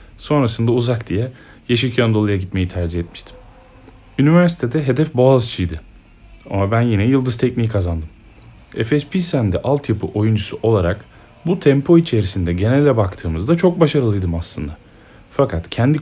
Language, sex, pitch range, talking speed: Turkish, male, 90-120 Hz, 115 wpm